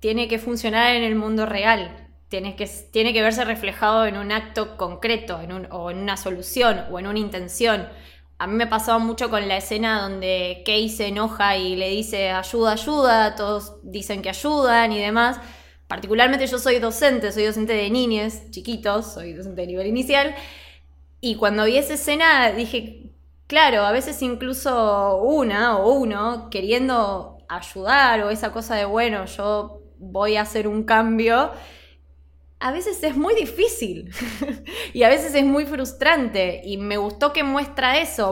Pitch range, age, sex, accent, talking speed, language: 195-245 Hz, 20-39, female, Argentinian, 170 wpm, Spanish